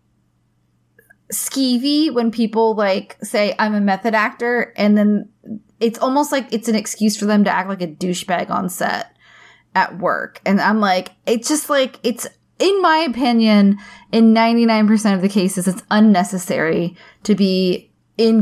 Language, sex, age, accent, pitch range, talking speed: English, female, 20-39, American, 195-245 Hz, 155 wpm